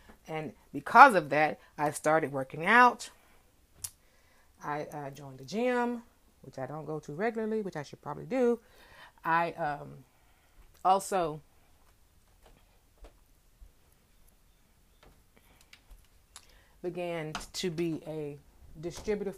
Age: 30-49